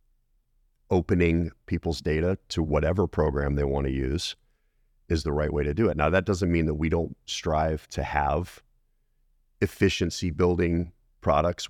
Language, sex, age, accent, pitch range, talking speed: English, male, 40-59, American, 75-95 Hz, 150 wpm